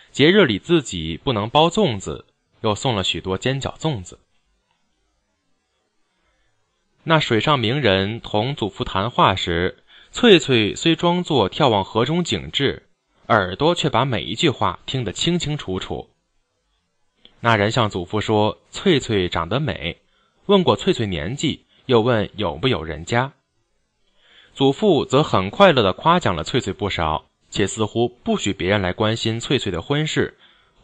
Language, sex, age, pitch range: Chinese, male, 20-39, 95-140 Hz